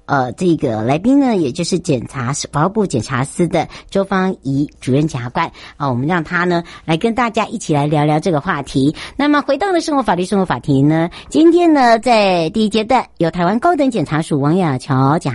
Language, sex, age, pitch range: Chinese, male, 60-79, 155-230 Hz